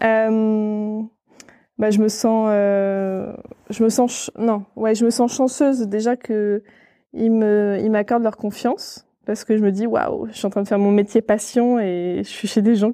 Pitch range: 200-230 Hz